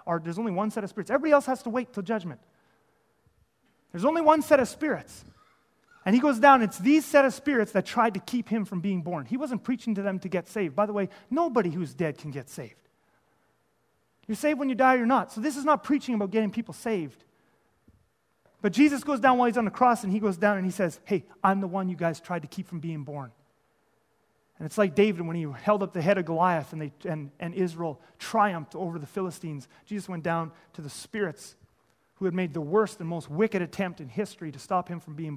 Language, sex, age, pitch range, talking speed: English, male, 30-49, 165-220 Hz, 240 wpm